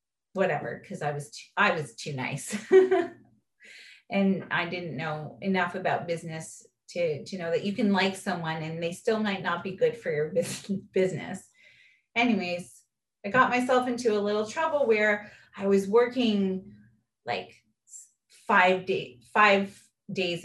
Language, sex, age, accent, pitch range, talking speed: English, female, 30-49, American, 170-210 Hz, 150 wpm